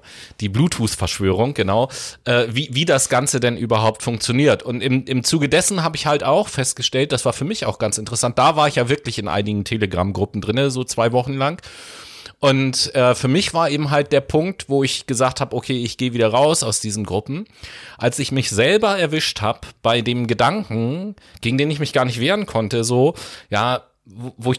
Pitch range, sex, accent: 115-150 Hz, male, German